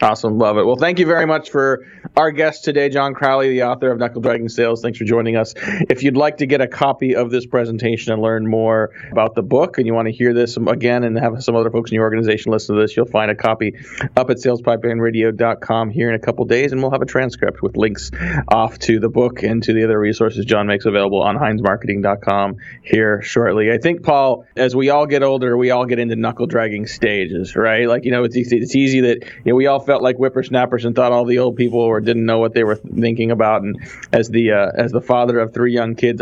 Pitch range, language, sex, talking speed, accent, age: 115-135 Hz, English, male, 245 wpm, American, 30-49